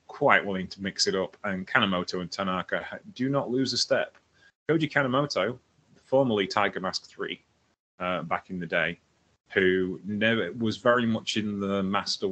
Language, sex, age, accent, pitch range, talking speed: English, male, 30-49, British, 95-120 Hz, 165 wpm